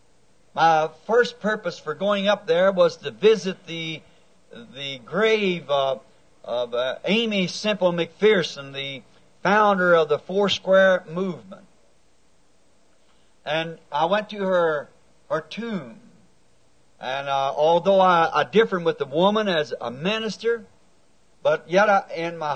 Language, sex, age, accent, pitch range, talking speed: English, male, 60-79, American, 150-200 Hz, 130 wpm